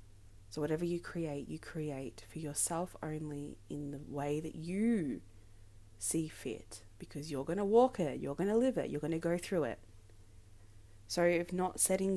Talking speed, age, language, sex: 180 wpm, 20-39, English, female